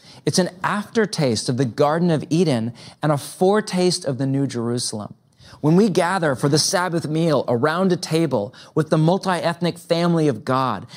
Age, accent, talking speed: 30-49, American, 170 wpm